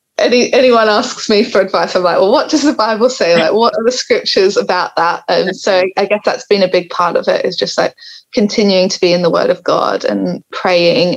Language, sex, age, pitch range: English, female, 10-29, 175-230 Hz